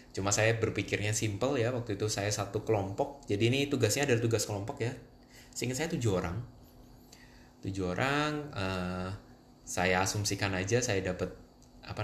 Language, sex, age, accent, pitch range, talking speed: Indonesian, male, 20-39, native, 95-120 Hz, 150 wpm